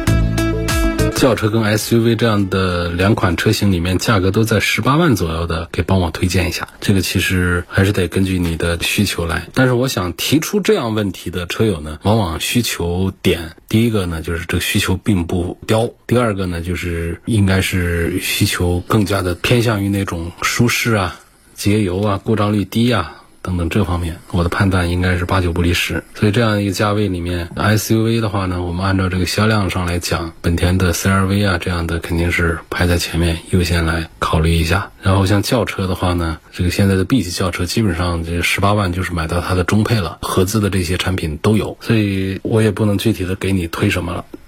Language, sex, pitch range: Chinese, male, 85-105 Hz